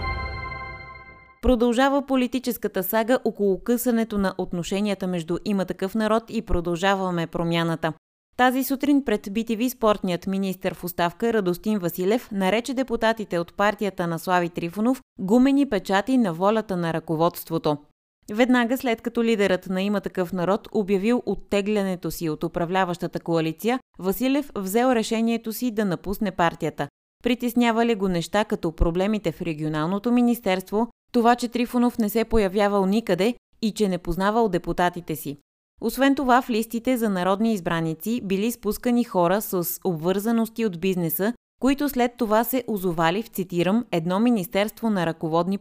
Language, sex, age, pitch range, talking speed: Bulgarian, female, 20-39, 175-230 Hz, 135 wpm